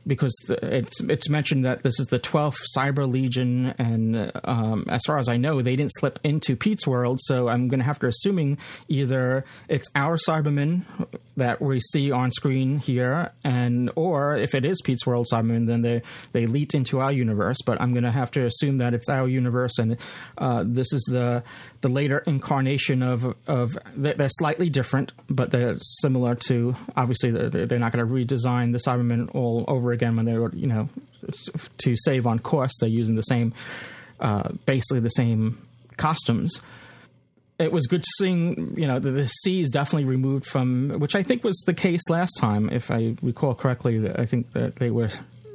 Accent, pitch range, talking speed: American, 120-150 Hz, 190 wpm